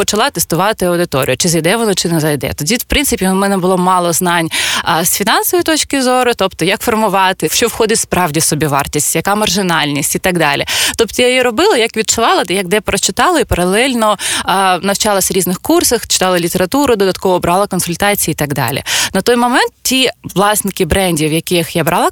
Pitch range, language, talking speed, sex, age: 175-225 Hz, Ukrainian, 185 wpm, female, 20-39